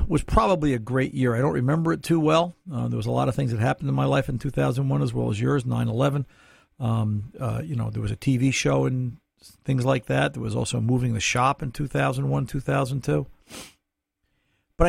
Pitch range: 120-155 Hz